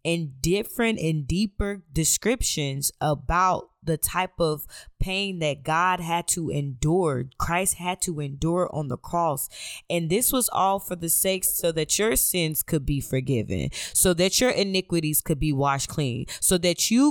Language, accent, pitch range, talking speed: English, American, 180-245 Hz, 165 wpm